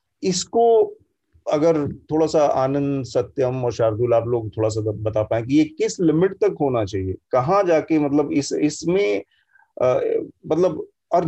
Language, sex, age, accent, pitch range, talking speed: Hindi, male, 30-49, native, 125-165 Hz, 150 wpm